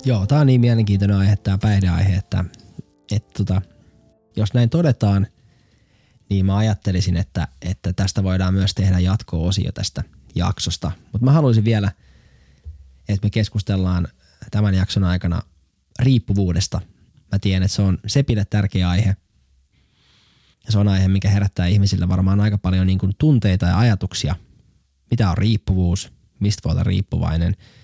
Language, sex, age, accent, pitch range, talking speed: Finnish, male, 20-39, native, 95-110 Hz, 145 wpm